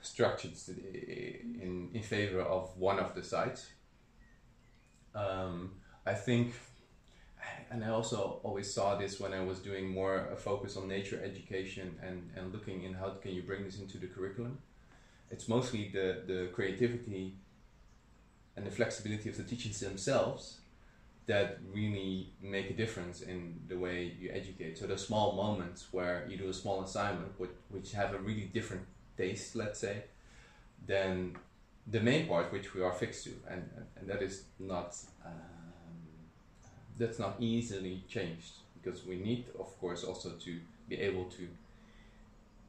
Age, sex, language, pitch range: 20-39, male, Dutch, 90-105 Hz